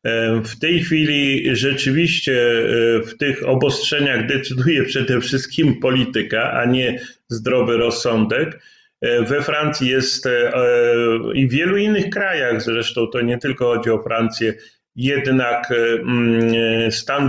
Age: 40-59